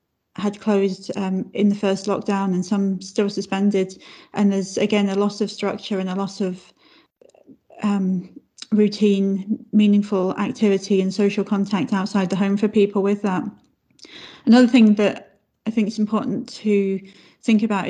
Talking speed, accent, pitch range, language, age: 155 wpm, British, 195-210 Hz, English, 30-49